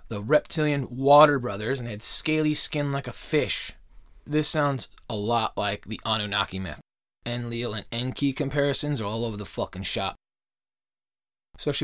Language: English